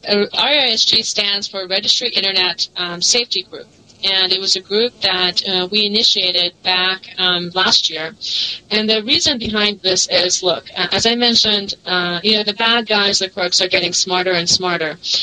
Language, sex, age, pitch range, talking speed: English, female, 30-49, 180-215 Hz, 175 wpm